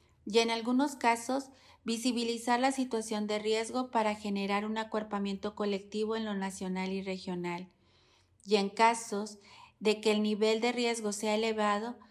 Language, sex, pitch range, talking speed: Spanish, female, 200-235 Hz, 150 wpm